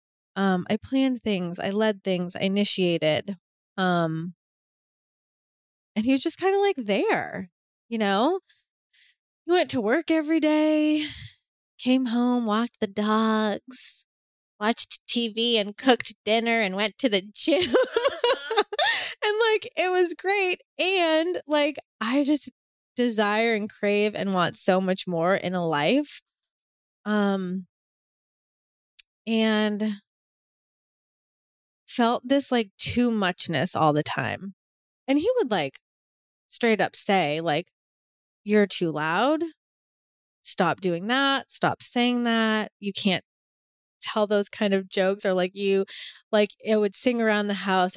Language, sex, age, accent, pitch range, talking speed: English, female, 20-39, American, 190-255 Hz, 130 wpm